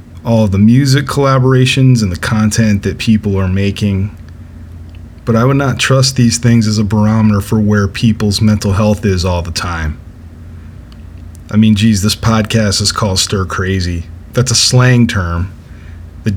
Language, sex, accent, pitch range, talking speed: English, male, American, 85-110 Hz, 165 wpm